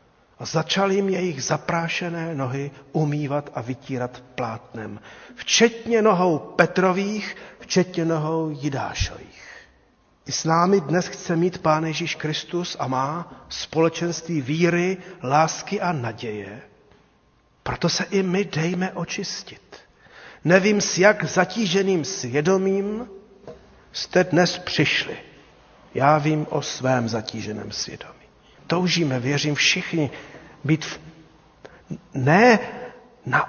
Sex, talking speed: male, 105 wpm